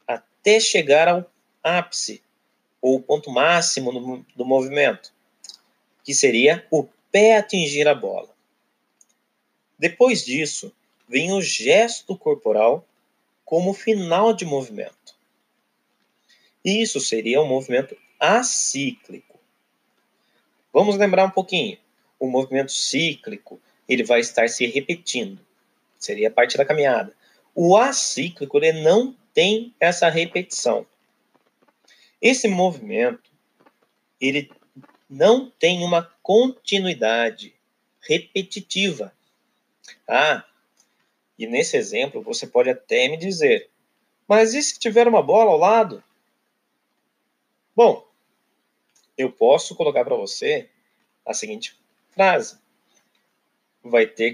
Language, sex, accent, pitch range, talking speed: Portuguese, male, Brazilian, 160-235 Hz, 105 wpm